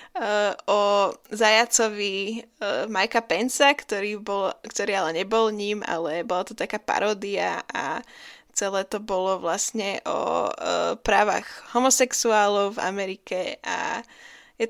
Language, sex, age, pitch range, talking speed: Slovak, female, 20-39, 200-235 Hz, 120 wpm